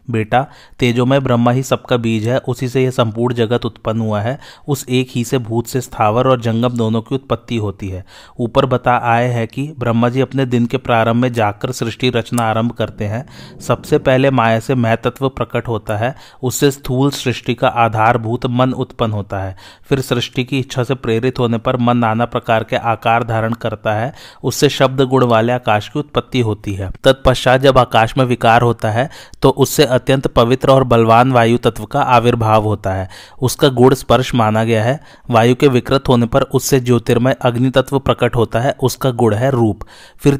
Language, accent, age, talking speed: Hindi, native, 30-49, 175 wpm